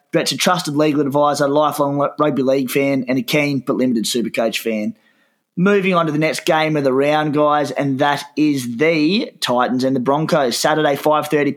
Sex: male